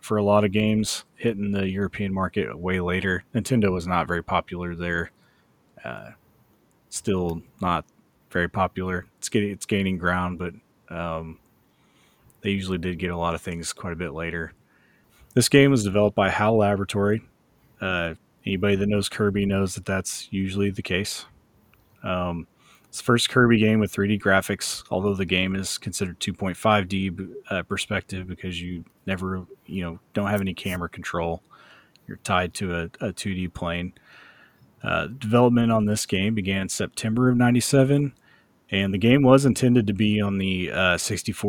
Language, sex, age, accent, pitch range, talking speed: English, male, 30-49, American, 90-105 Hz, 160 wpm